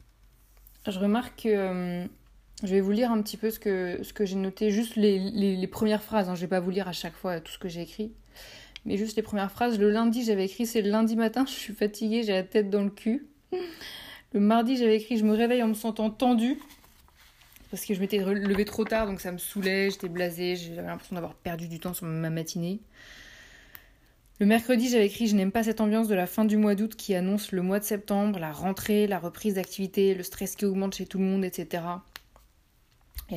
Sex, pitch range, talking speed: female, 185-220 Hz, 230 wpm